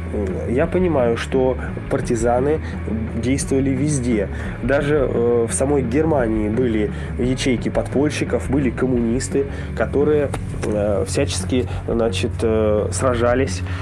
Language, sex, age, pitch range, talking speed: Russian, male, 20-39, 100-130 Hz, 80 wpm